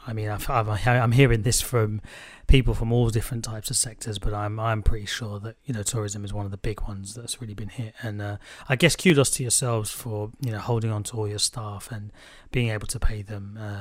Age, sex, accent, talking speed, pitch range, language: 30-49, male, British, 245 wpm, 105-125 Hz, English